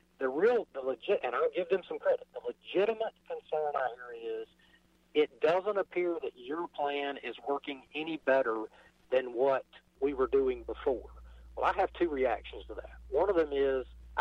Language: English